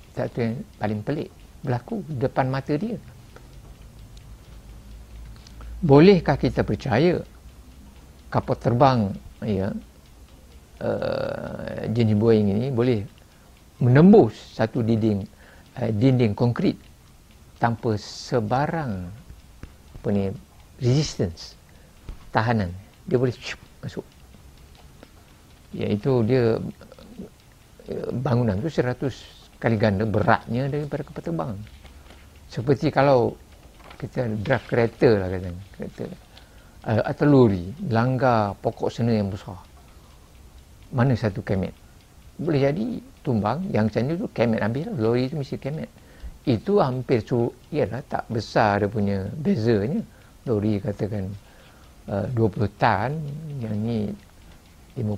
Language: Malay